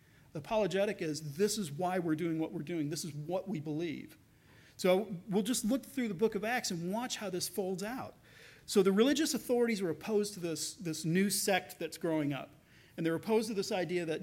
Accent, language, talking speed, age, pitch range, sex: American, English, 220 wpm, 40-59, 160-210 Hz, male